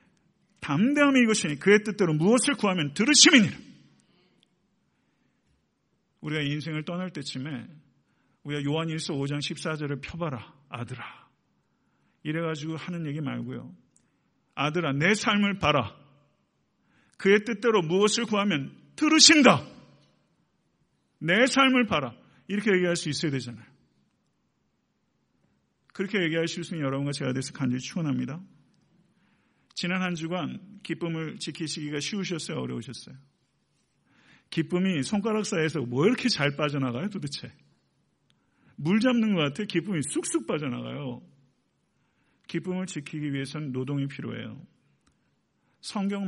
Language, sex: Korean, male